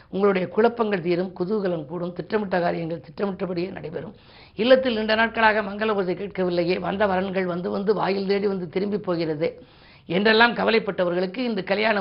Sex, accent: female, native